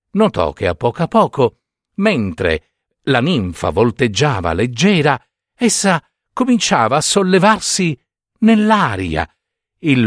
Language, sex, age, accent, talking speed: Italian, male, 50-69, native, 100 wpm